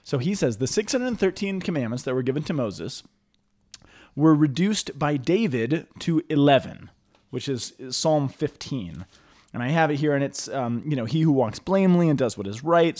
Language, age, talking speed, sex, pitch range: English, 20-39, 185 wpm, male, 115-155 Hz